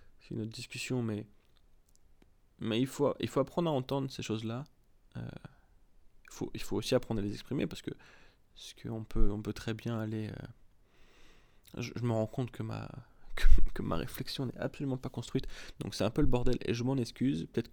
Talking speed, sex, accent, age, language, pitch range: 215 wpm, male, French, 20-39, French, 105-125 Hz